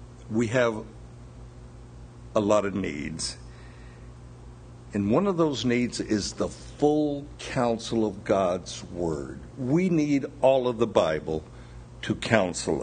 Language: English